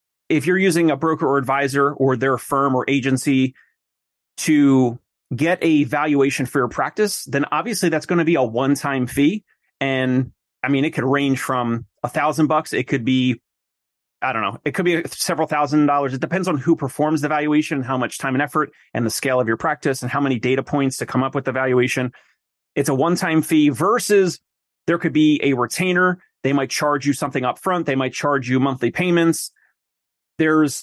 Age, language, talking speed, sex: 30-49, English, 200 wpm, male